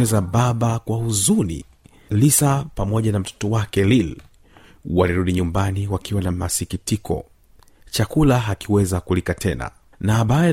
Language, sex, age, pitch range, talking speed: Swahili, male, 40-59, 90-115 Hz, 120 wpm